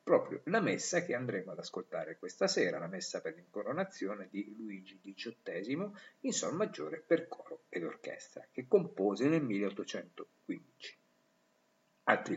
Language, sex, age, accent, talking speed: Italian, male, 50-69, native, 135 wpm